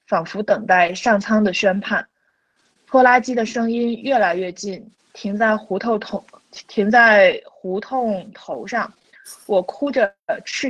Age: 20-39